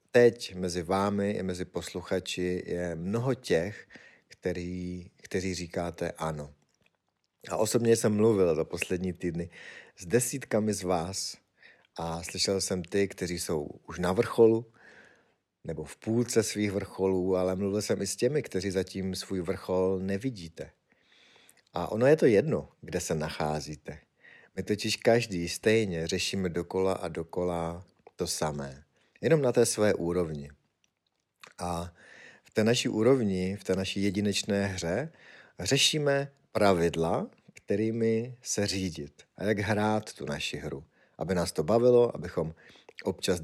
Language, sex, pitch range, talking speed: Czech, male, 85-110 Hz, 135 wpm